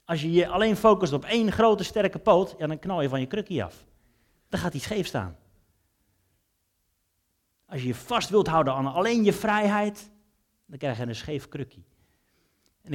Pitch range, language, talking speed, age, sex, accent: 115-180 Hz, Dutch, 180 wpm, 30-49, male, Dutch